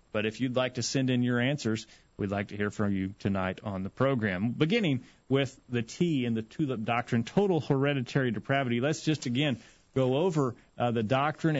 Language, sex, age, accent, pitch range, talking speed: English, male, 40-59, American, 120-155 Hz, 195 wpm